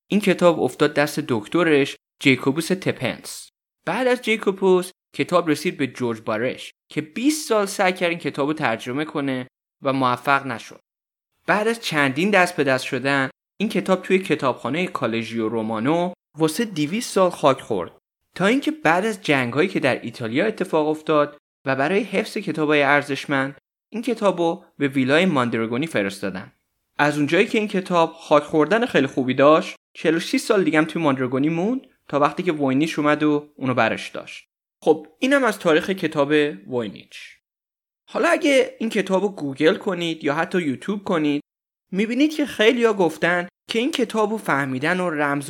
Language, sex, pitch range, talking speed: Persian, male, 135-185 Hz, 155 wpm